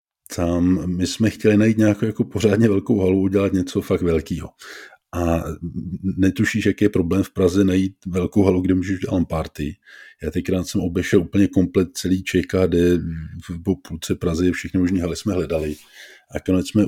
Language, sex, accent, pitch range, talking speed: Czech, male, native, 85-95 Hz, 165 wpm